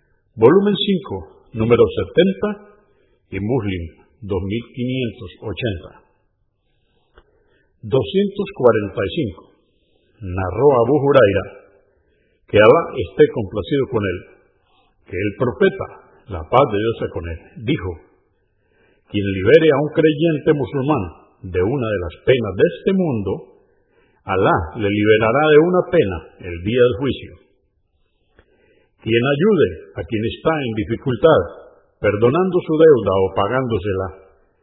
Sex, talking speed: male, 110 wpm